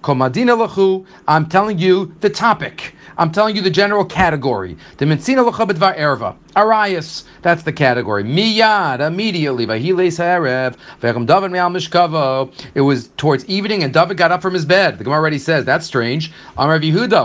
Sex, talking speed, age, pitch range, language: male, 160 wpm, 40-59, 140-185 Hz, English